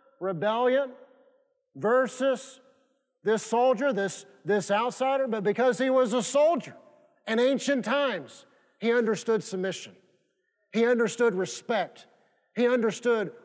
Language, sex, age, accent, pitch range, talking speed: English, male, 50-69, American, 195-250 Hz, 105 wpm